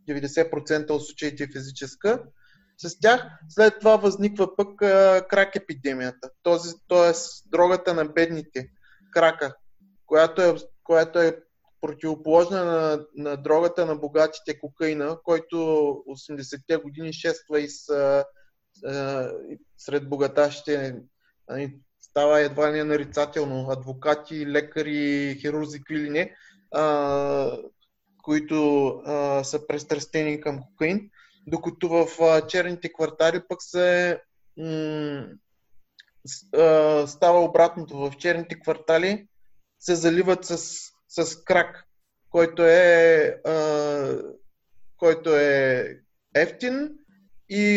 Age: 20-39